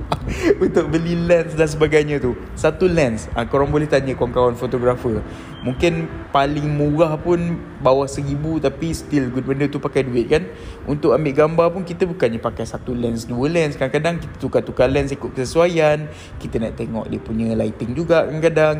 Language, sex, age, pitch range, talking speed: Malay, male, 20-39, 115-155 Hz, 165 wpm